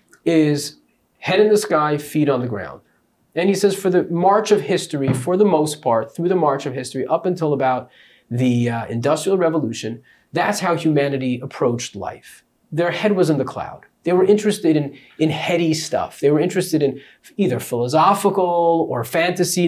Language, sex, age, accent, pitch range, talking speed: English, male, 30-49, American, 135-175 Hz, 180 wpm